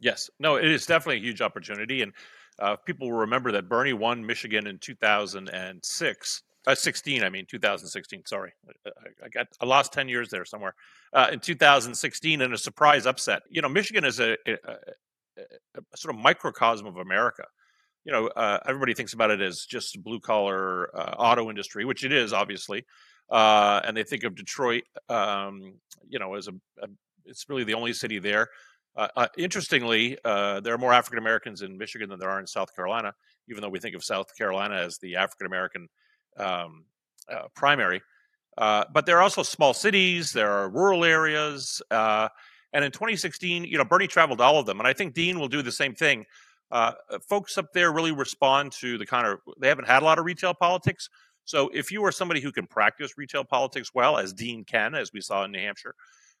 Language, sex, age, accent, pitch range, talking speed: English, male, 40-59, American, 110-170 Hz, 200 wpm